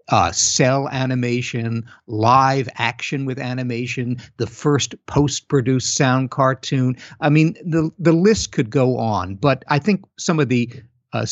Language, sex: English, male